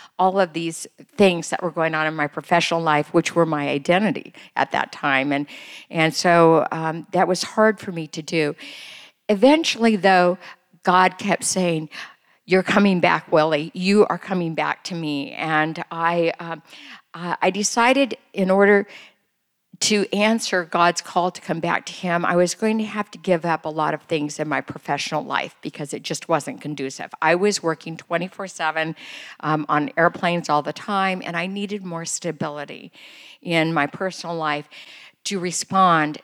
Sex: female